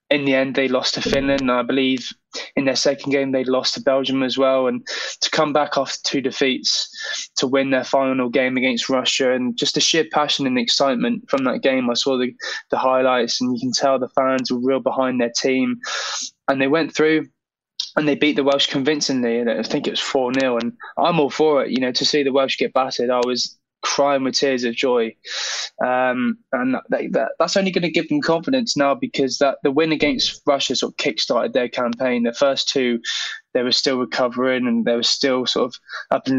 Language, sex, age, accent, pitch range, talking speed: English, male, 10-29, British, 130-150 Hz, 220 wpm